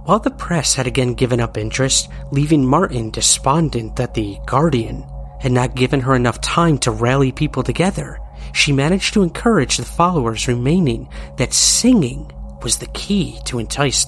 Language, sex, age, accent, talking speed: English, male, 30-49, American, 160 wpm